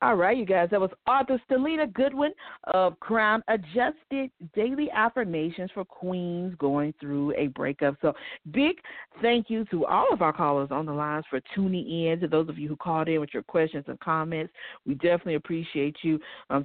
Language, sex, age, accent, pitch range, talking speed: English, female, 40-59, American, 150-220 Hz, 185 wpm